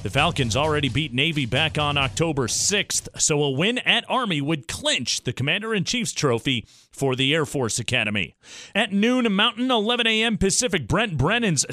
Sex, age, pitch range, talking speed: male, 30-49, 140-215 Hz, 165 wpm